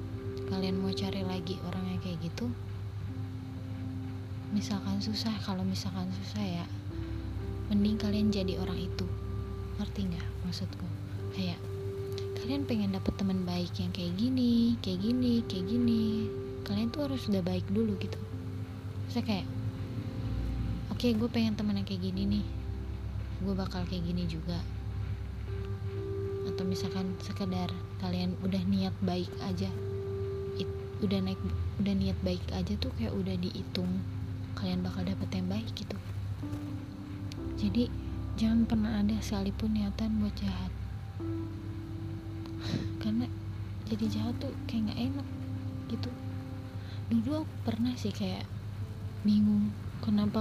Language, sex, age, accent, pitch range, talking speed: Indonesian, female, 20-39, native, 95-105 Hz, 125 wpm